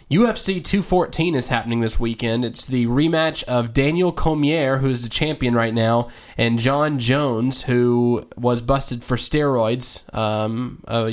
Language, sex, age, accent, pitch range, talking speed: English, male, 20-39, American, 115-140 Hz, 145 wpm